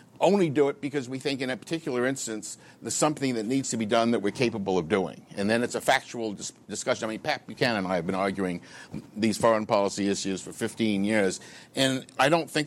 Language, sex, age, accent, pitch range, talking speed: English, male, 60-79, American, 100-130 Hz, 225 wpm